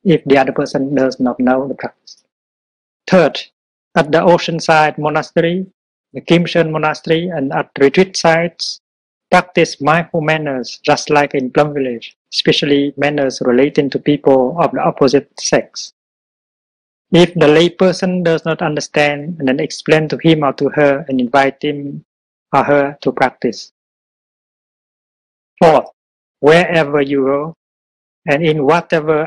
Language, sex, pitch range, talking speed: Vietnamese, male, 140-165 Hz, 135 wpm